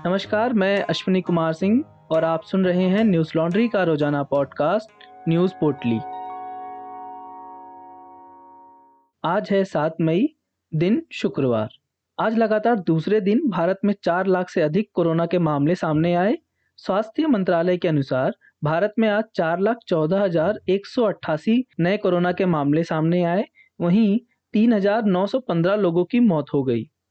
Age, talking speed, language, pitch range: 20-39, 140 wpm, Hindi, 165-210 Hz